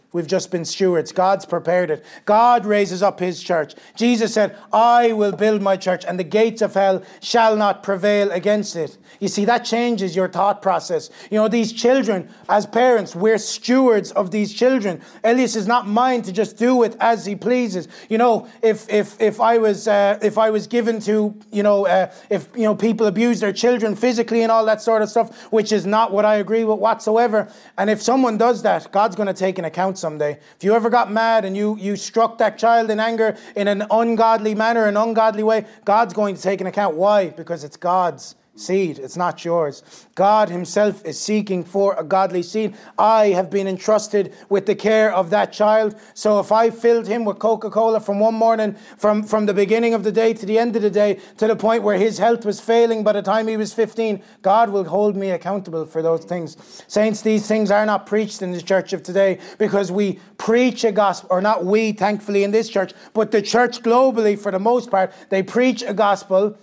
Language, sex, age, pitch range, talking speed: English, male, 30-49, 195-225 Hz, 215 wpm